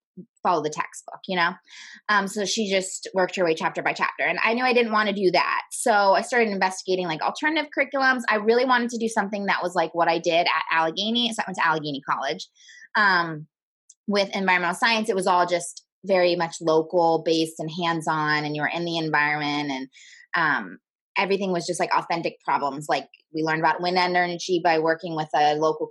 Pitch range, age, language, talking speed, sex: 165-215 Hz, 20-39, English, 210 wpm, female